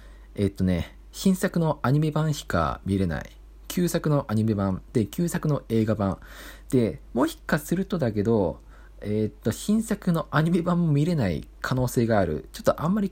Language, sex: Japanese, male